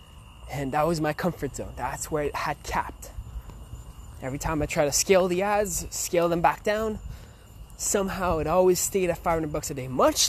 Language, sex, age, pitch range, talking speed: English, male, 20-39, 130-190 Hz, 190 wpm